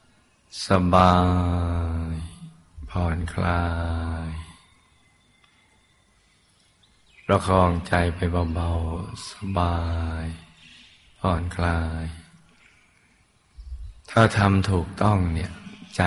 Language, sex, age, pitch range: Thai, male, 20-39, 85-95 Hz